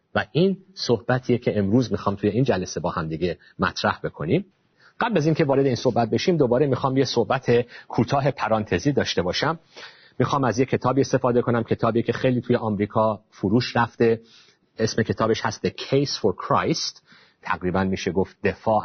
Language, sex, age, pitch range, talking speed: Persian, male, 40-59, 100-125 Hz, 170 wpm